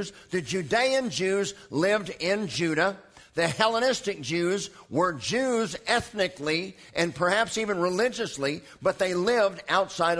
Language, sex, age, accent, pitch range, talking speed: English, male, 50-69, American, 155-205 Hz, 120 wpm